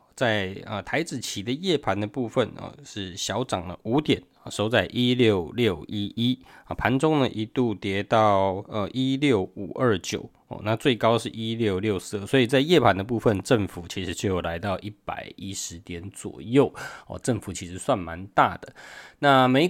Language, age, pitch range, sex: Chinese, 20-39, 95-125 Hz, male